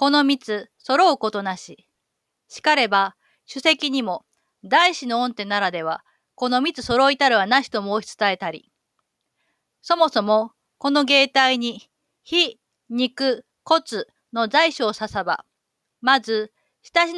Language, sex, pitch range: Japanese, female, 210-295 Hz